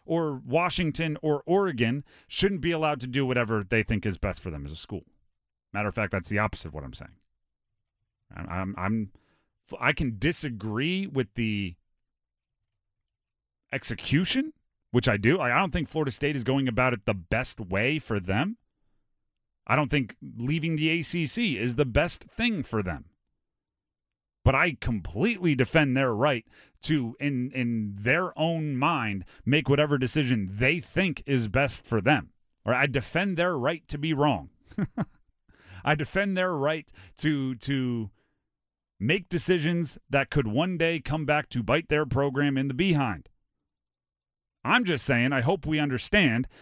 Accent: American